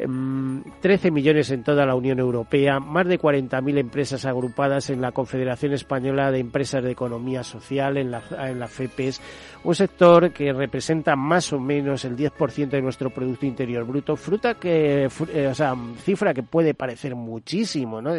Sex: male